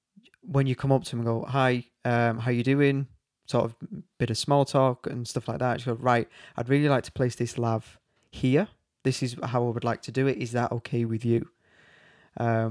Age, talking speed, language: 20-39, 230 wpm, English